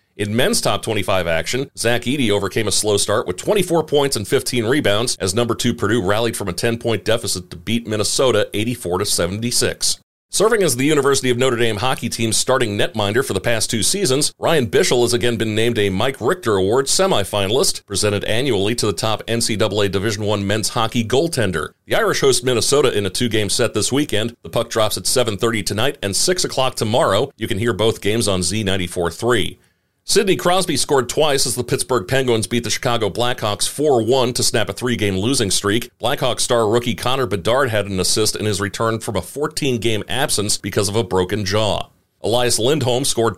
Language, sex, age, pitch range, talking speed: English, male, 40-59, 100-120 Hz, 190 wpm